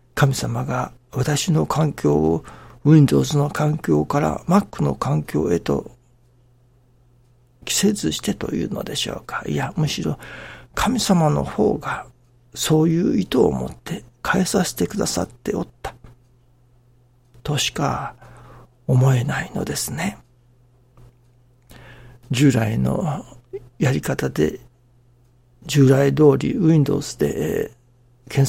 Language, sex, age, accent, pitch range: Japanese, male, 60-79, native, 120-140 Hz